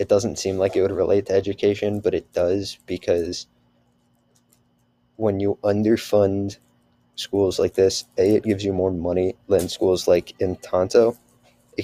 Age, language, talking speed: 20-39, English, 155 wpm